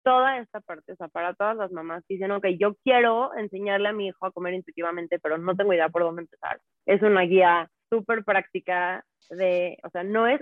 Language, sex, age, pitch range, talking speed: Spanish, female, 20-39, 175-220 Hz, 220 wpm